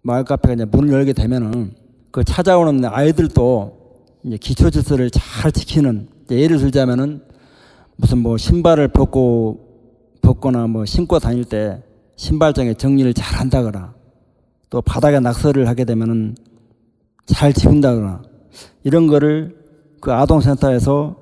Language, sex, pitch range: Korean, male, 115-140 Hz